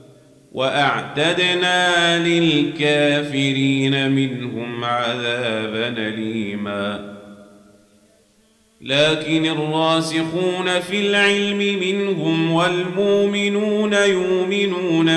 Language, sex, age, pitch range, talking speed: Arabic, male, 40-59, 145-175 Hz, 45 wpm